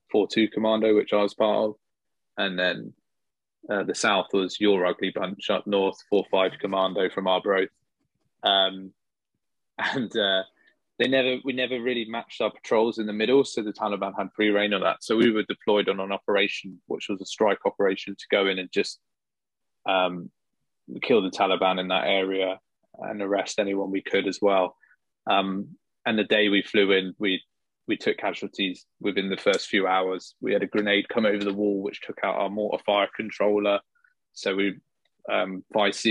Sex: male